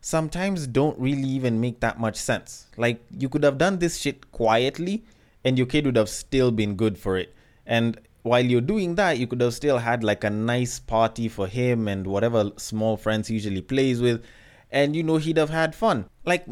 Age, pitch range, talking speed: 20-39, 125-180 Hz, 205 wpm